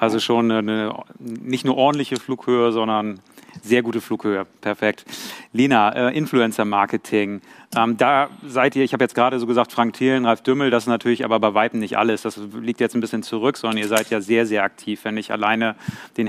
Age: 40-59